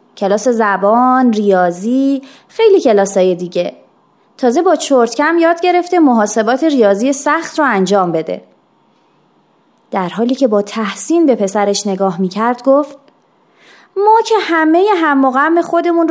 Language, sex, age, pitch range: Persian, female, 30-49, 205-335 Hz